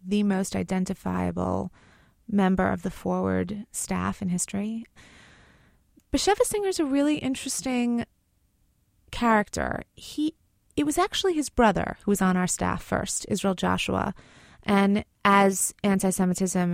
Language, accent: English, American